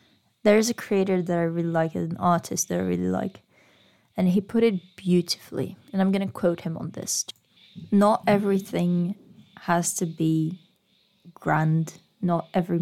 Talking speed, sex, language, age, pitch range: 165 wpm, female, English, 20-39, 165-195 Hz